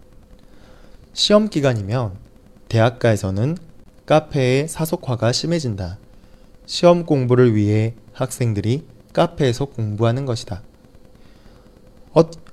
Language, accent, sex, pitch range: Chinese, Korean, male, 105-145 Hz